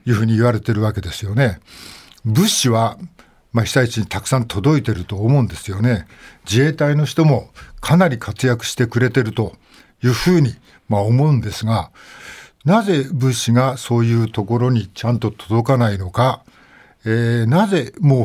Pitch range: 110-135 Hz